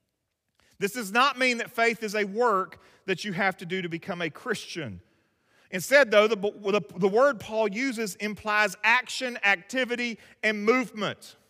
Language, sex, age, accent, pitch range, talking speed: English, male, 40-59, American, 205-270 Hz, 155 wpm